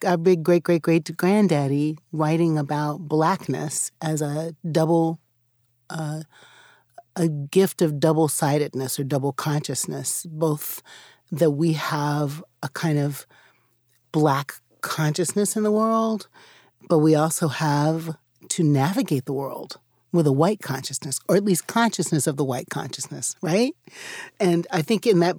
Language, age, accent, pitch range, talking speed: English, 40-59, American, 150-185 Hz, 140 wpm